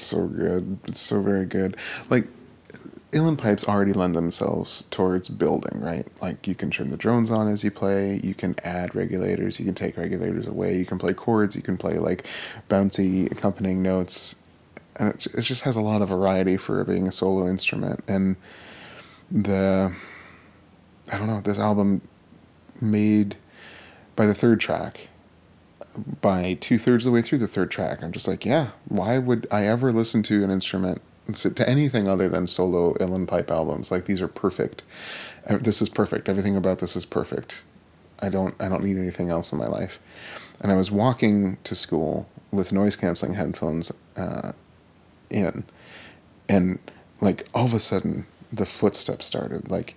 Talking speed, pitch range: 170 wpm, 90-105 Hz